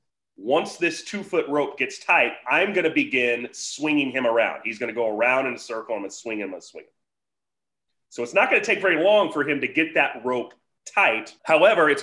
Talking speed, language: 225 wpm, English